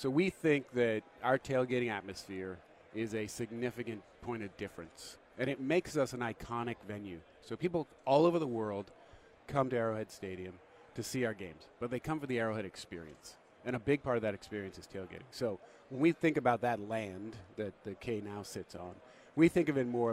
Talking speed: 205 wpm